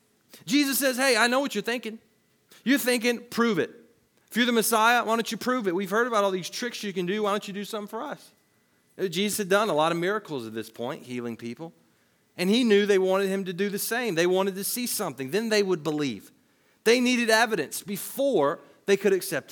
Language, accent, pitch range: English, American, 145-230 Hz